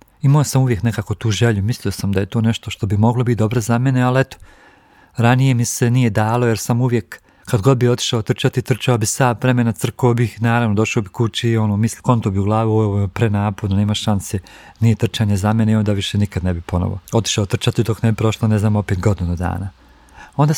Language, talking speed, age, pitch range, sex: Croatian, 225 wpm, 40-59, 105-130 Hz, male